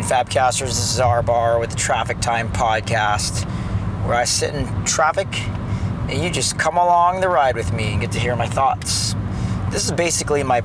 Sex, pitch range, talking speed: male, 100-120 Hz, 190 wpm